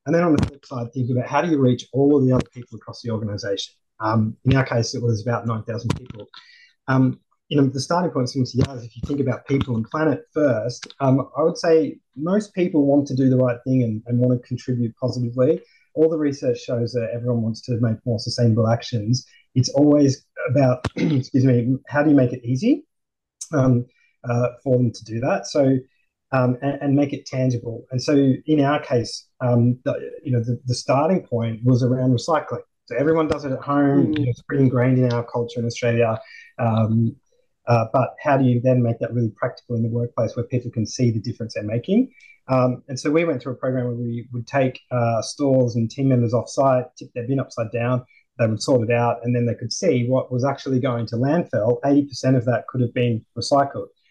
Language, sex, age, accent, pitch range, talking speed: English, male, 30-49, Australian, 120-140 Hz, 220 wpm